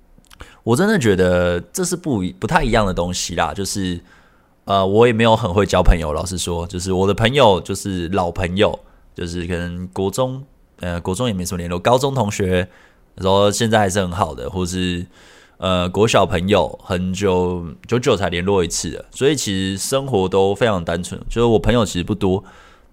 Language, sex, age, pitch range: Chinese, male, 20-39, 90-120 Hz